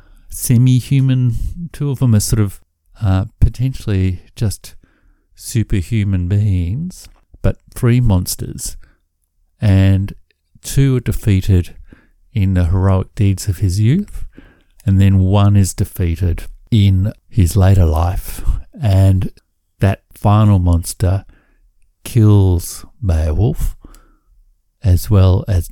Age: 50-69